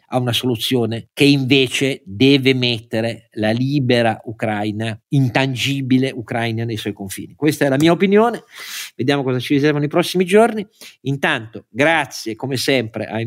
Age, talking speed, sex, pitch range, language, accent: 50-69, 145 wpm, male, 115-160 Hz, Italian, native